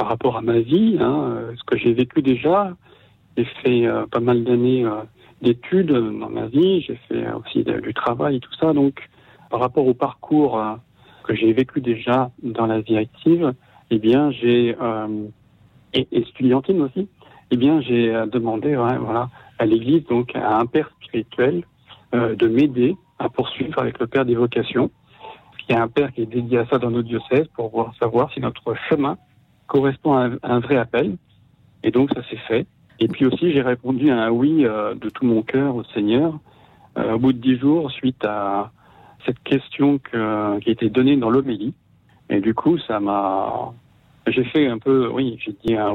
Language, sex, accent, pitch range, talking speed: French, male, French, 115-135 Hz, 195 wpm